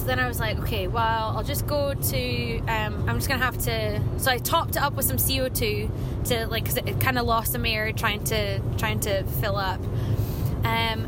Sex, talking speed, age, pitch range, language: female, 220 wpm, 10-29, 110-120 Hz, English